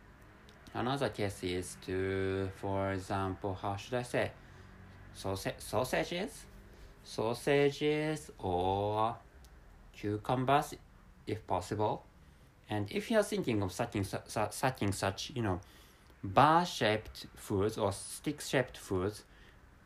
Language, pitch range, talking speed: English, 95-120 Hz, 110 wpm